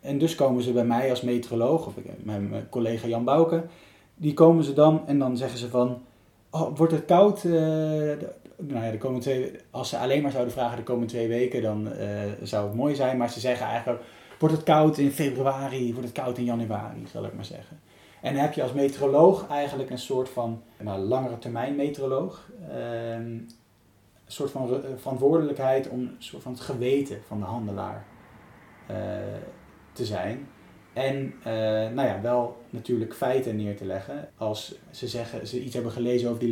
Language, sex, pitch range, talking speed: Dutch, male, 115-135 Hz, 190 wpm